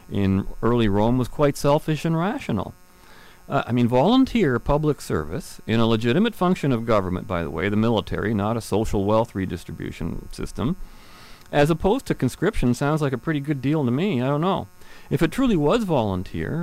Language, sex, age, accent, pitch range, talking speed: English, male, 40-59, American, 95-140 Hz, 185 wpm